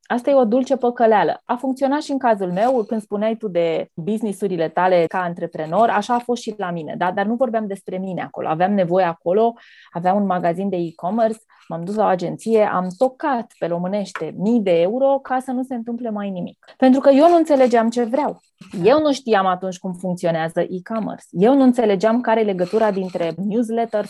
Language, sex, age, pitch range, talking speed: Romanian, female, 20-39, 185-240 Hz, 200 wpm